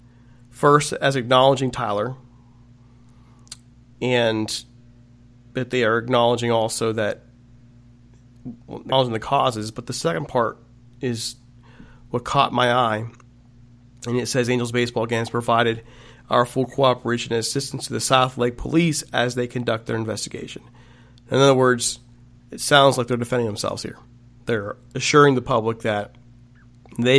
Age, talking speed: 40-59, 135 wpm